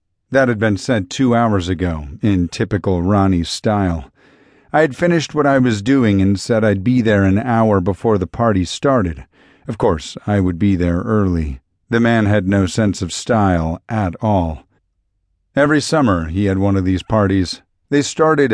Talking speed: 180 wpm